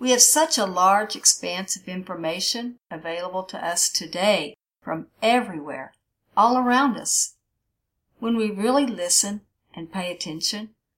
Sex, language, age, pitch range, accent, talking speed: female, English, 50-69, 165-225 Hz, American, 130 wpm